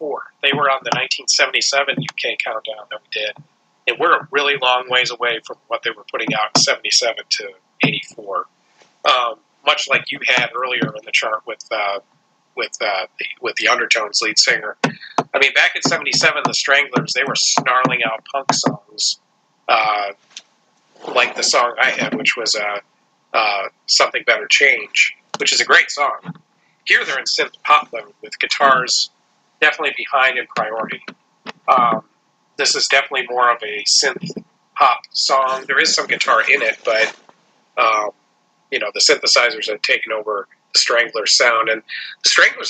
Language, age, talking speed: English, 40-59, 160 wpm